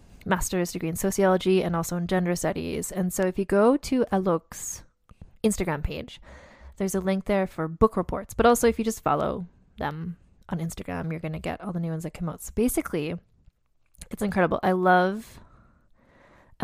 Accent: American